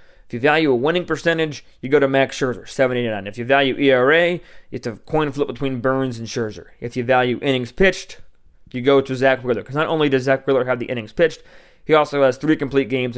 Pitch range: 125-155 Hz